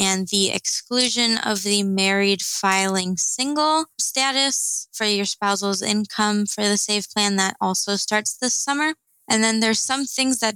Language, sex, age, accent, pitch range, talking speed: English, female, 20-39, American, 190-220 Hz, 160 wpm